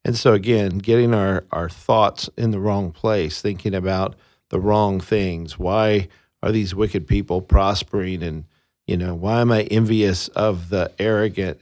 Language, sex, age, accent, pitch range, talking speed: English, male, 50-69, American, 90-115 Hz, 165 wpm